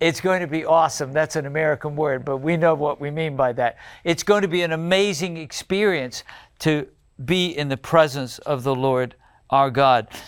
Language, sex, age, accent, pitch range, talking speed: English, male, 50-69, American, 145-185 Hz, 200 wpm